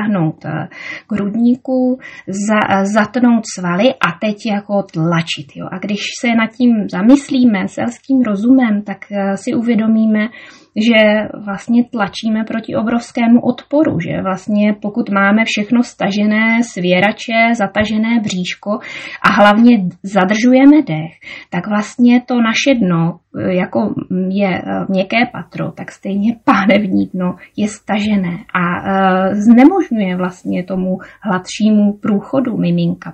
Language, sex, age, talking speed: Czech, female, 20-39, 115 wpm